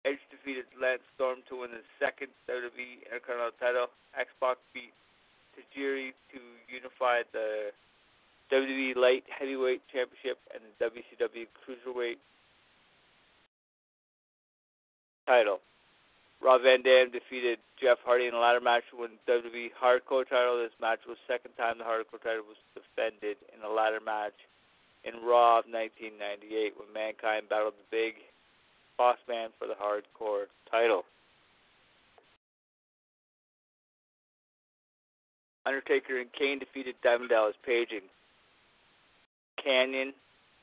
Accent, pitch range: American, 115-130 Hz